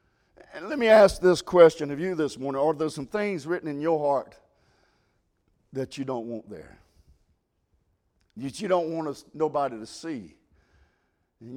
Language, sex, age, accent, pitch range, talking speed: English, male, 50-69, American, 130-210 Hz, 160 wpm